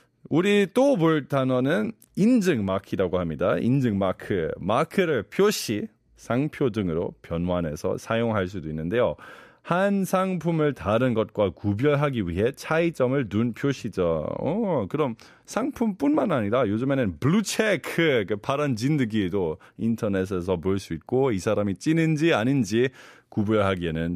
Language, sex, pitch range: Korean, male, 110-185 Hz